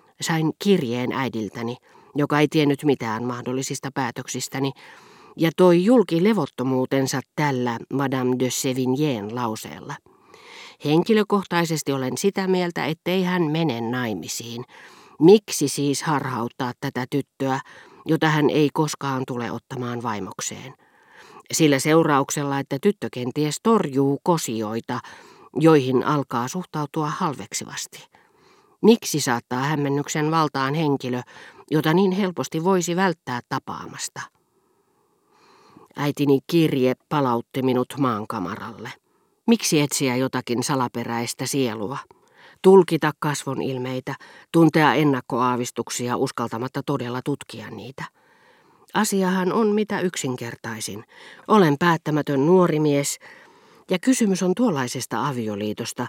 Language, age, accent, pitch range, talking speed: Finnish, 40-59, native, 125-170 Hz, 95 wpm